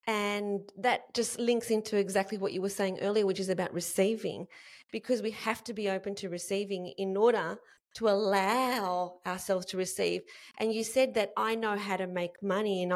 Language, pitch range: English, 195-230 Hz